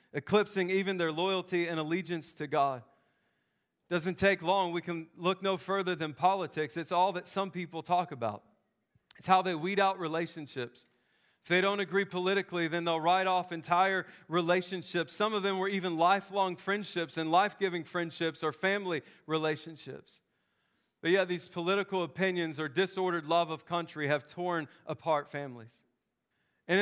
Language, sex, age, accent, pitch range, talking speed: English, male, 40-59, American, 165-195 Hz, 155 wpm